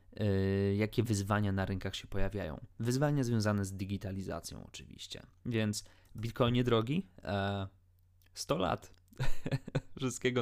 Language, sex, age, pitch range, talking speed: Polish, male, 20-39, 100-120 Hz, 115 wpm